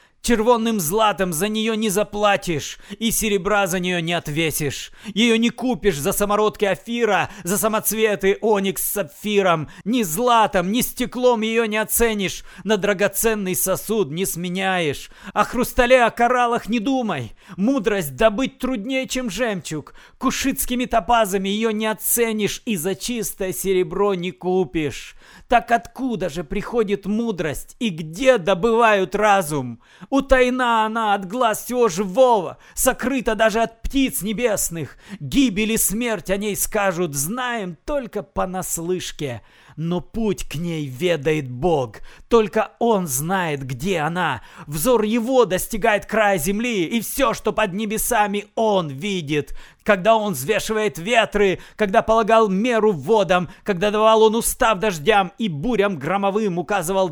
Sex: male